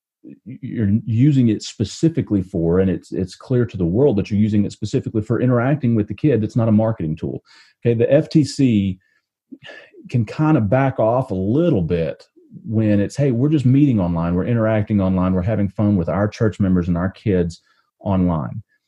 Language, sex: English, male